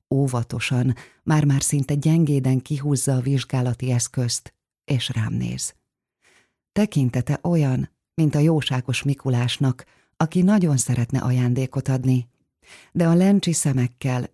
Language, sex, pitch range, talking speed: Hungarian, female, 125-145 Hz, 110 wpm